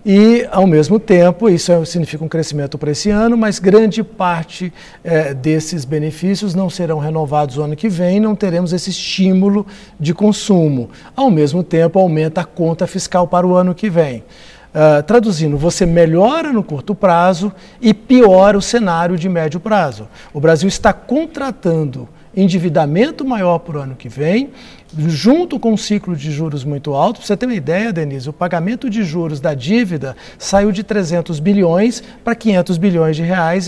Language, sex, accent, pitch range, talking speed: English, male, Brazilian, 160-210 Hz, 165 wpm